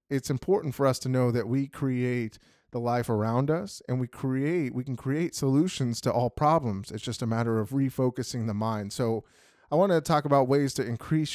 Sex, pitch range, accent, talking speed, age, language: male, 115-140 Hz, American, 205 wpm, 30-49, English